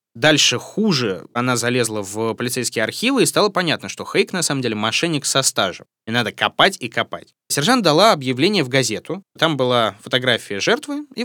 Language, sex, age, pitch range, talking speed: Russian, male, 20-39, 115-160 Hz, 175 wpm